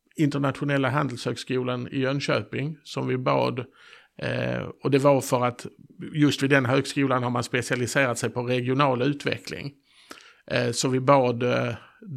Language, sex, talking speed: Swedish, male, 145 wpm